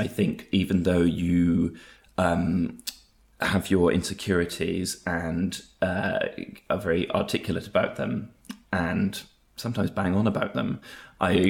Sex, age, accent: male, 20-39, British